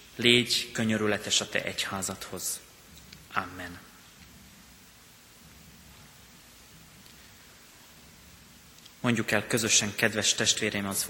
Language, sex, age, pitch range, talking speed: Hungarian, male, 30-49, 105-120 Hz, 65 wpm